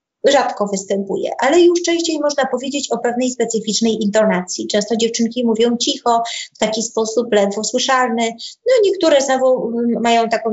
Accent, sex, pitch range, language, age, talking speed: native, female, 215-270 Hz, Polish, 20-39, 150 wpm